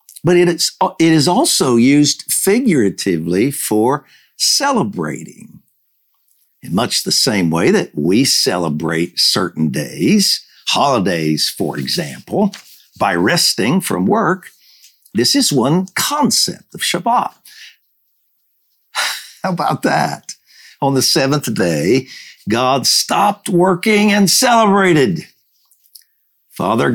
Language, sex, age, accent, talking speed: English, male, 60-79, American, 100 wpm